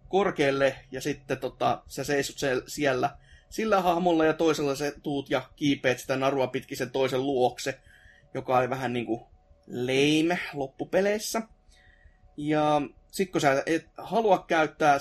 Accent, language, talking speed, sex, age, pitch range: native, Finnish, 140 wpm, male, 30-49, 135-175 Hz